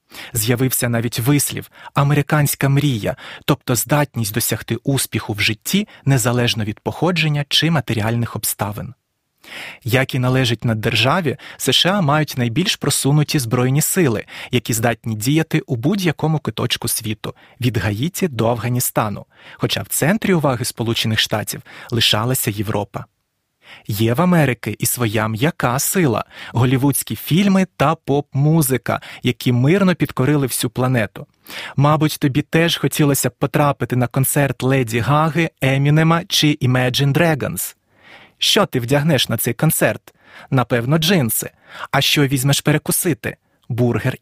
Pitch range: 120-155 Hz